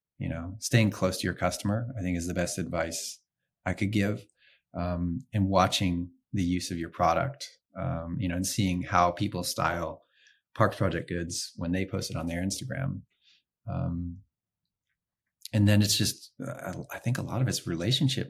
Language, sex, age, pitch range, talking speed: English, male, 30-49, 90-105 Hz, 175 wpm